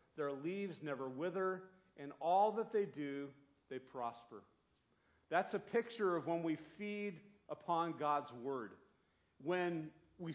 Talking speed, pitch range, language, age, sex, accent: 135 wpm, 150-195 Hz, English, 50-69, male, American